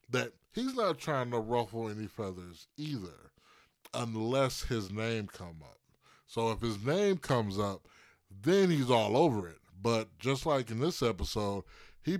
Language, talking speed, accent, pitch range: English, 160 wpm, American, 100-140 Hz